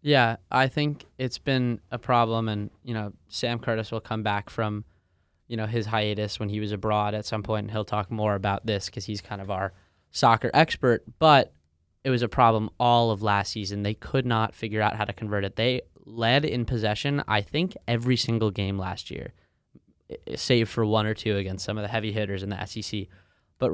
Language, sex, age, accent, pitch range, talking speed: English, male, 10-29, American, 100-125 Hz, 210 wpm